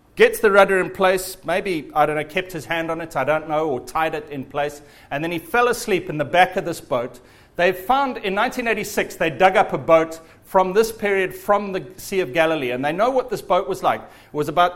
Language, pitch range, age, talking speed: English, 160-220 Hz, 40-59, 250 wpm